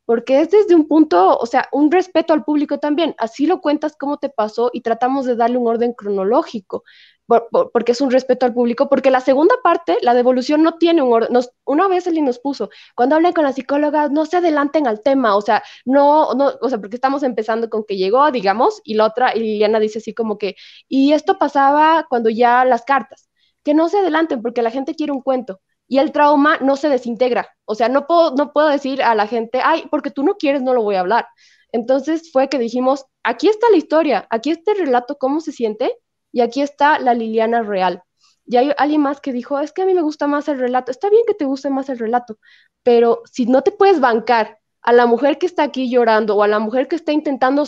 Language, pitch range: Spanish, 235-300 Hz